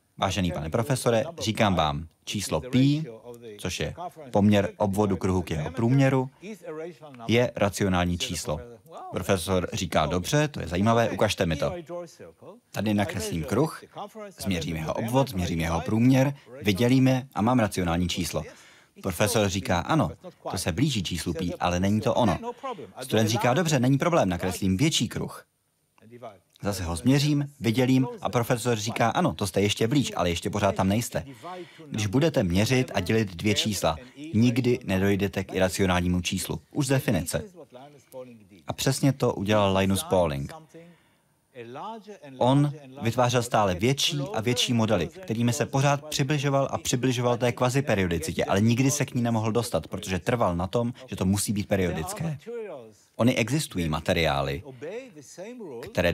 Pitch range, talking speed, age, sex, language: 95-130 Hz, 145 wpm, 30-49, male, Czech